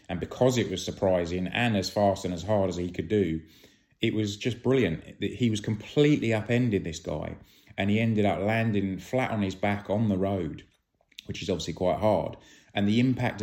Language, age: English, 30-49